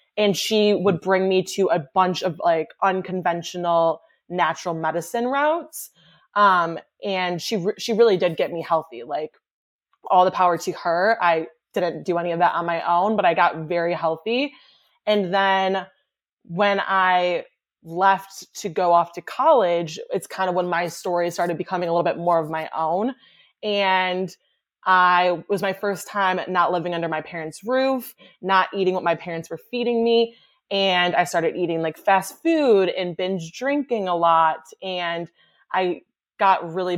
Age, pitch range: 20-39, 170-200 Hz